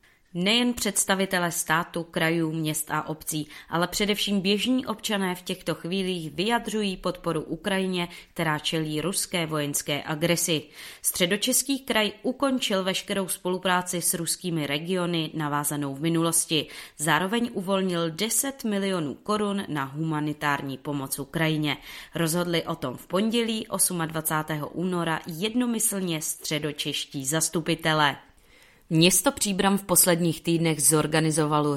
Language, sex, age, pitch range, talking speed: Czech, female, 30-49, 150-185 Hz, 110 wpm